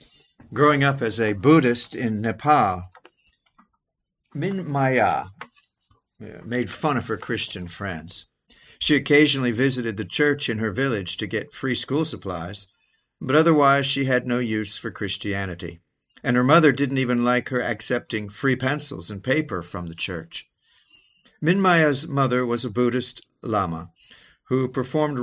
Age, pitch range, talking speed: 50-69, 110-140 Hz, 140 wpm